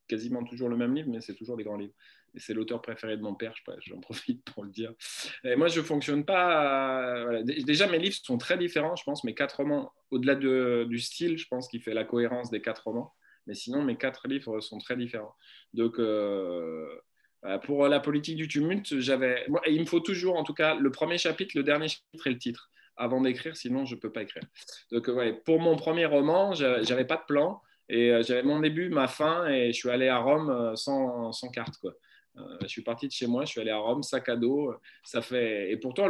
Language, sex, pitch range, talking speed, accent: French, male, 115-150 Hz, 220 wpm, French